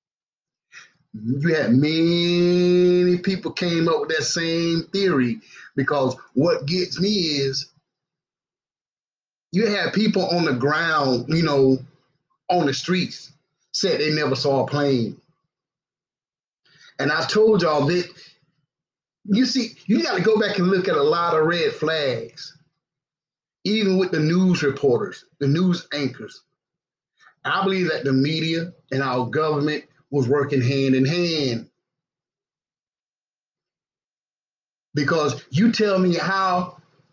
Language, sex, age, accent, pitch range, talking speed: English, male, 30-49, American, 140-180 Hz, 125 wpm